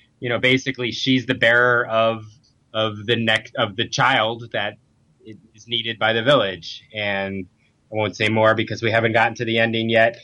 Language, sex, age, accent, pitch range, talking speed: English, male, 20-39, American, 120-150 Hz, 190 wpm